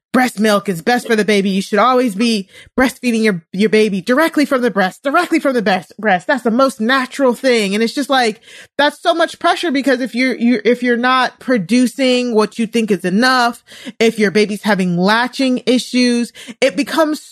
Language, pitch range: English, 195-250 Hz